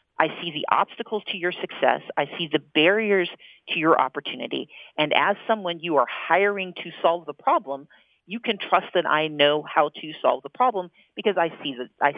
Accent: American